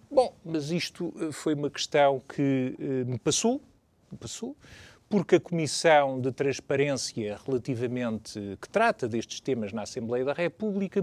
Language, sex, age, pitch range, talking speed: Portuguese, male, 40-59, 135-205 Hz, 145 wpm